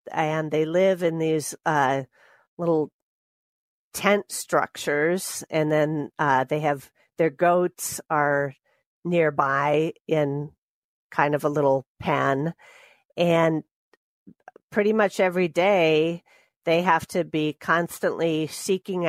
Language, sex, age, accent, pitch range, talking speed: English, female, 40-59, American, 145-170 Hz, 110 wpm